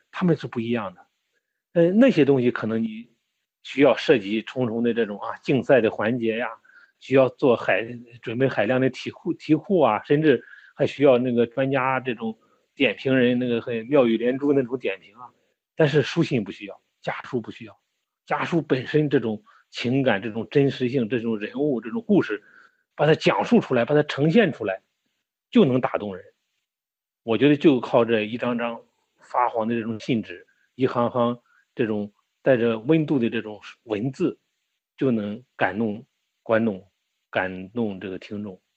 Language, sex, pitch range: Chinese, male, 110-145 Hz